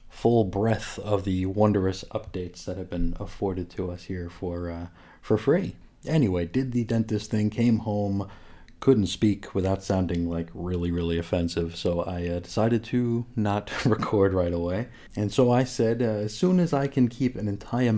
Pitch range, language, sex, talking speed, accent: 90-115 Hz, English, male, 180 wpm, American